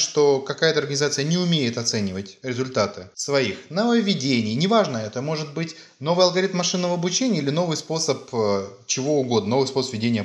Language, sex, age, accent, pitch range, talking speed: Russian, male, 20-39, native, 110-170 Hz, 145 wpm